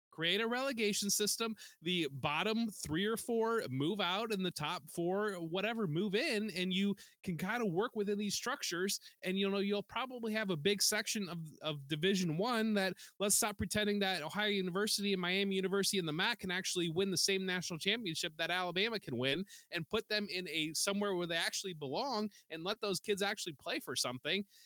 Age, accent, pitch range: 20-39, American, 165-210 Hz